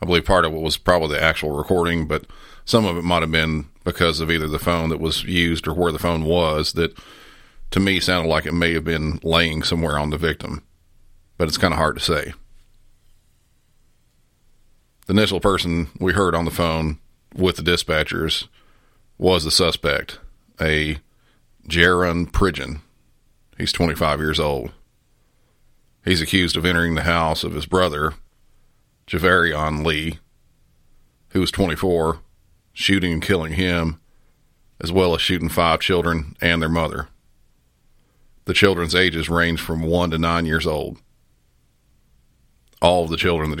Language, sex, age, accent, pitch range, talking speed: English, male, 40-59, American, 80-90 Hz, 155 wpm